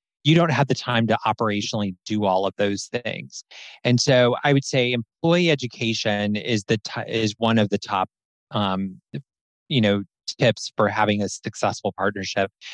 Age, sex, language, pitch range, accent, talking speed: 20-39, male, English, 105-140 Hz, American, 170 wpm